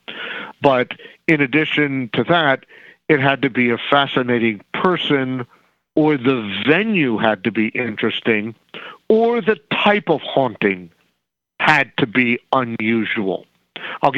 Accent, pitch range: American, 120-155 Hz